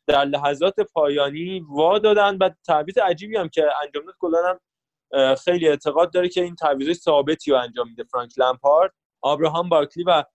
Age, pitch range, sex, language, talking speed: 20-39, 140-180 Hz, male, Persian, 155 wpm